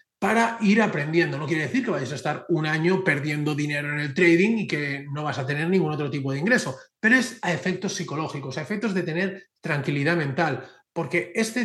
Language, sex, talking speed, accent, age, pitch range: Spanish, male, 210 wpm, Spanish, 30-49, 150-195 Hz